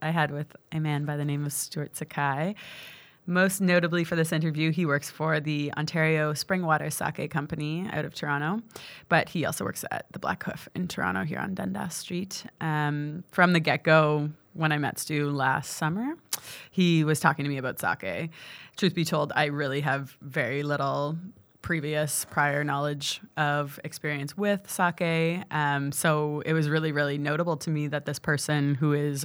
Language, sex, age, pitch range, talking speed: English, female, 20-39, 145-165 Hz, 180 wpm